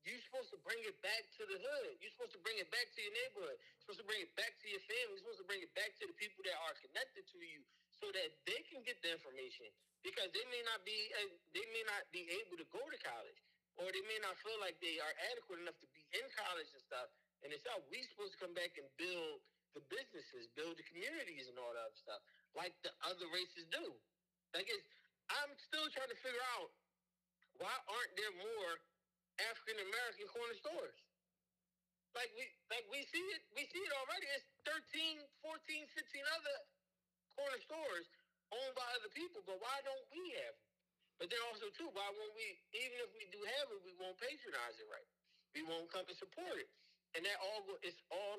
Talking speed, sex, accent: 215 wpm, male, American